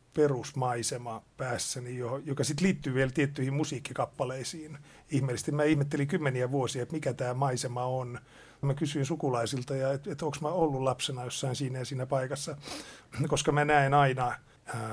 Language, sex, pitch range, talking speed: Finnish, male, 125-145 Hz, 150 wpm